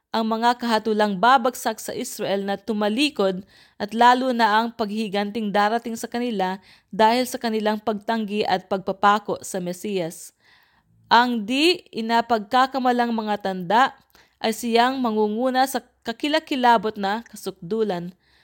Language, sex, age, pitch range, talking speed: English, female, 20-39, 200-245 Hz, 115 wpm